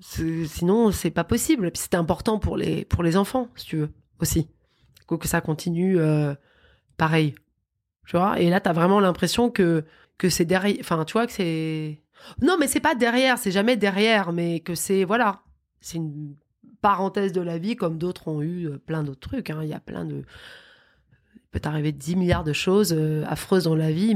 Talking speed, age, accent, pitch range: 200 wpm, 20-39, French, 160-210 Hz